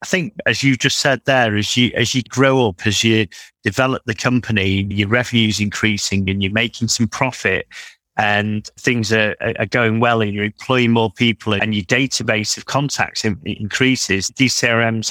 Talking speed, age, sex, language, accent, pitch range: 180 wpm, 30-49, male, English, British, 105-125 Hz